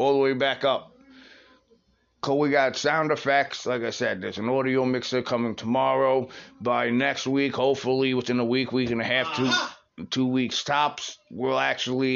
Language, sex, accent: English, male, American